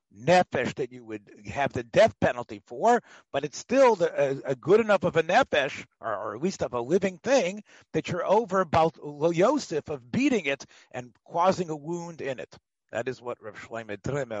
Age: 50-69